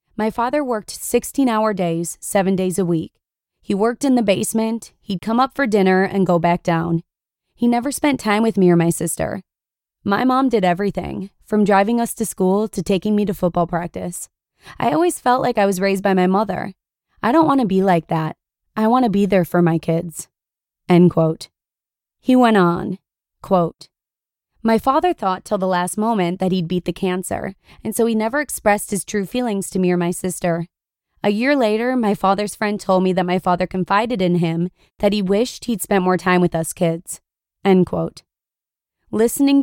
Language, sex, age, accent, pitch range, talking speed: English, female, 20-39, American, 180-230 Hz, 195 wpm